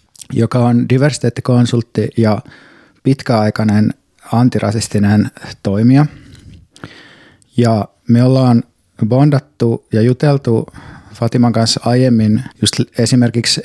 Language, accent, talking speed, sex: Finnish, native, 80 wpm, male